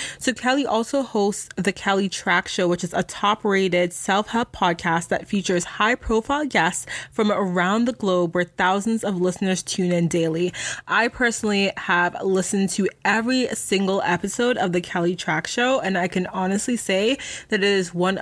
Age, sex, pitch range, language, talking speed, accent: 20-39, female, 180-230 Hz, English, 175 wpm, American